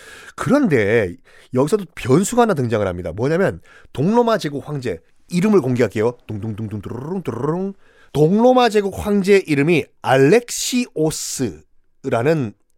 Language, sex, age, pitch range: Korean, male, 40-59, 150-240 Hz